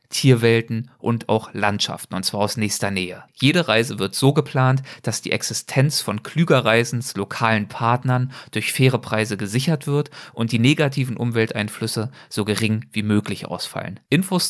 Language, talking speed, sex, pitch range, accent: German, 150 wpm, male, 105-130 Hz, German